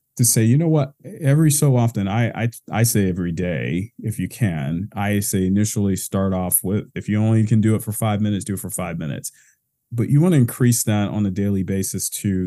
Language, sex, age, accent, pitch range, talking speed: English, male, 40-59, American, 105-130 Hz, 230 wpm